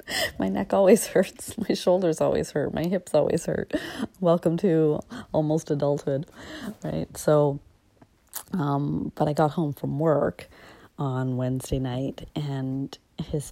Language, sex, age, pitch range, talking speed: English, female, 30-49, 130-155 Hz, 135 wpm